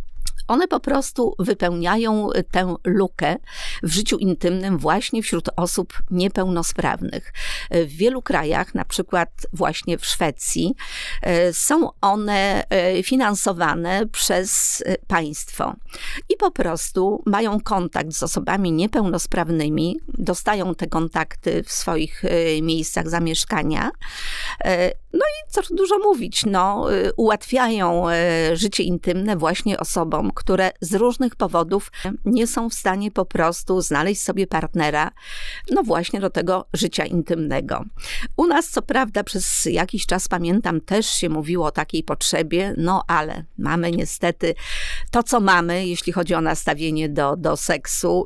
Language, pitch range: Polish, 170-210 Hz